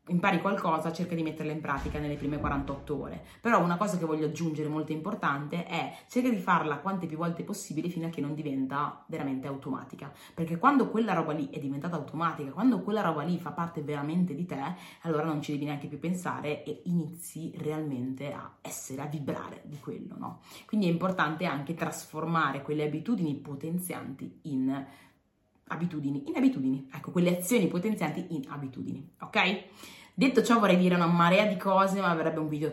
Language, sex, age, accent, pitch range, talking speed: Italian, female, 30-49, native, 155-195 Hz, 180 wpm